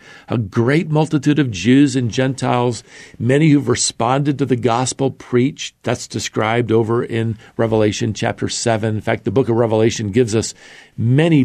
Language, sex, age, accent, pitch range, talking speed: English, male, 50-69, American, 110-140 Hz, 155 wpm